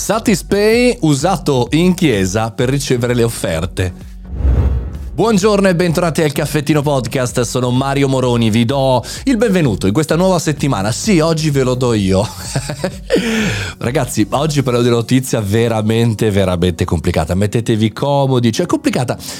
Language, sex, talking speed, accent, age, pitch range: Italian, male, 135 wpm, native, 30-49, 105-170 Hz